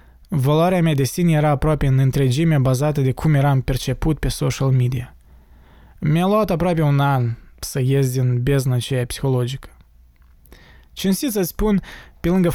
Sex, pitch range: male, 130-165 Hz